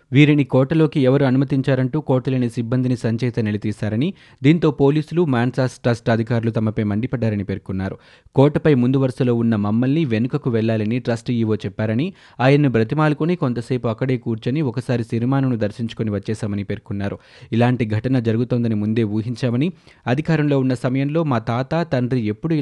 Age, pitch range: 20-39, 110-135 Hz